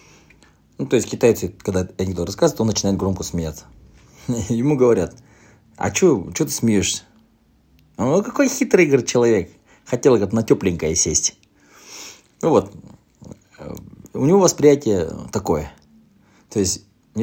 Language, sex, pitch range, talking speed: Russian, male, 85-115 Hz, 120 wpm